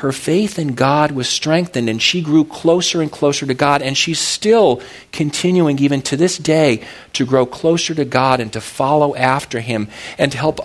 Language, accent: English, American